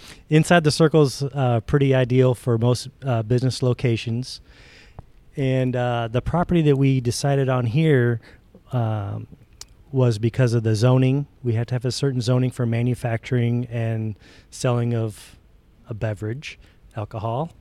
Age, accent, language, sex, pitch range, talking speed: 40-59, American, English, male, 115-135 Hz, 145 wpm